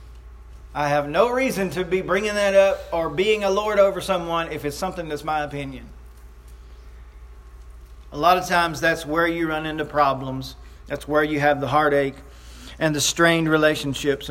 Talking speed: 170 wpm